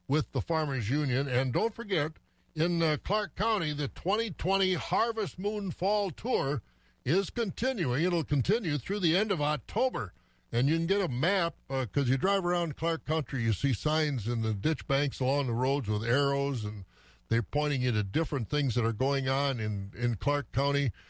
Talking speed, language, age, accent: 190 wpm, English, 60-79, American